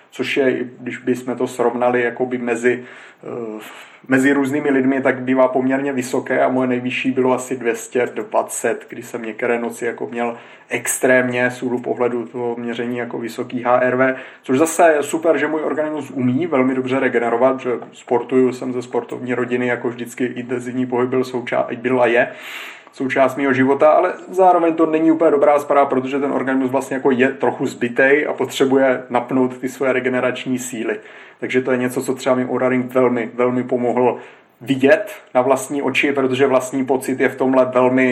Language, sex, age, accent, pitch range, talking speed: Czech, male, 30-49, native, 125-135 Hz, 165 wpm